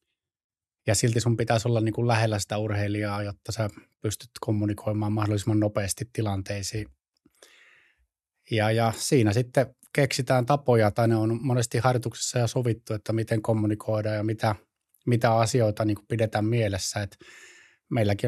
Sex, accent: male, native